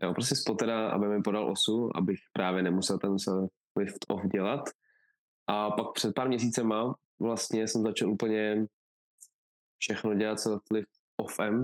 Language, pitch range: Czech, 100-115 Hz